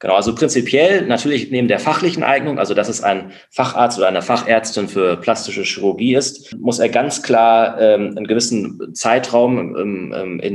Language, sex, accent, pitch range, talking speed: German, male, German, 105-130 Hz, 170 wpm